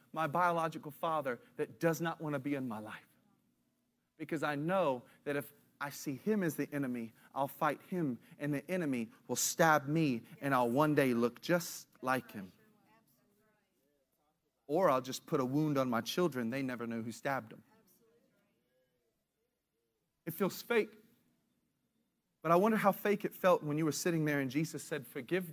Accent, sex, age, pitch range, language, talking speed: American, male, 40-59, 150-235 Hz, English, 175 wpm